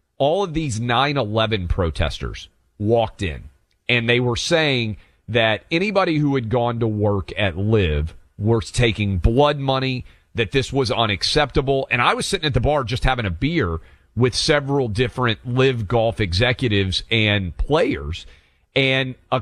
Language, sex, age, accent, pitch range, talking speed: English, male, 40-59, American, 95-135 Hz, 150 wpm